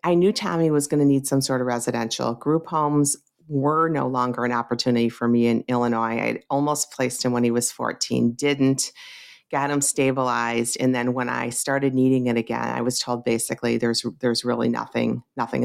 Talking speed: 195 wpm